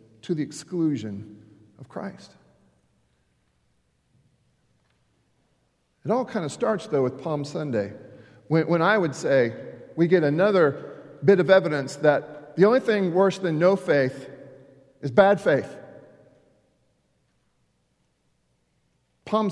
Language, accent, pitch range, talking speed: English, American, 150-215 Hz, 115 wpm